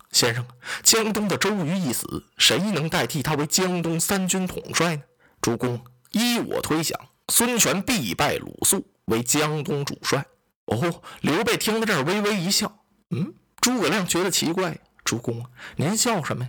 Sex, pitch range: male, 125-190 Hz